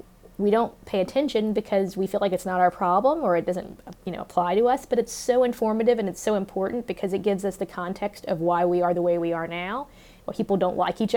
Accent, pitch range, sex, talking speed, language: American, 180-225 Hz, female, 260 wpm, English